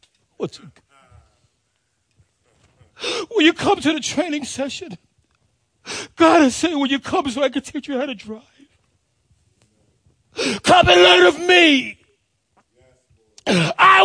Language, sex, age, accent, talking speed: English, male, 30-49, American, 115 wpm